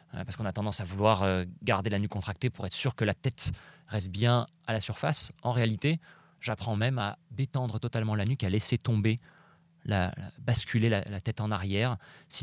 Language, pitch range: French, 100-130 Hz